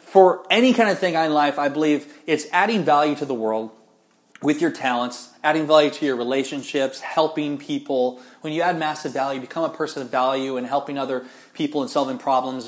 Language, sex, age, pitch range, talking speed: English, male, 20-39, 135-165 Hz, 200 wpm